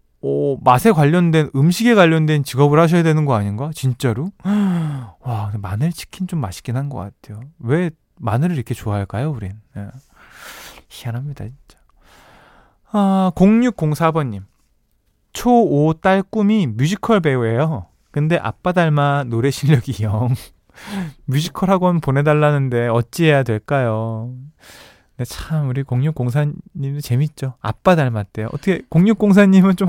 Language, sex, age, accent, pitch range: Korean, male, 20-39, native, 125-180 Hz